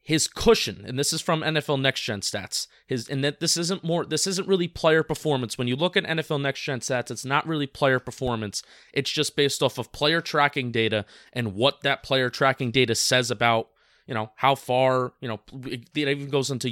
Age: 20-39